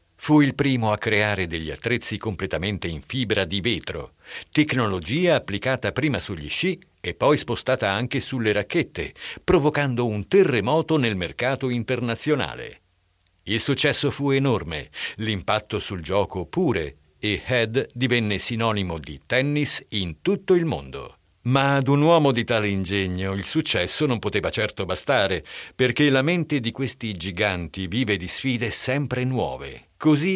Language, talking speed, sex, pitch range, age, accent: Italian, 140 wpm, male, 95-140 Hz, 50-69, native